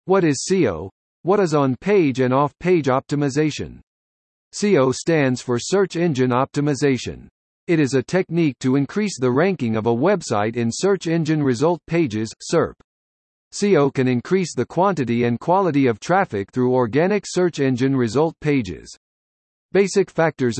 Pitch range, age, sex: 120-175 Hz, 50-69, male